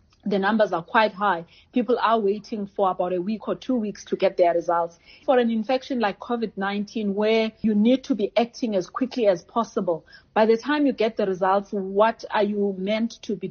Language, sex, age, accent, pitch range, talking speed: English, female, 30-49, South African, 190-225 Hz, 210 wpm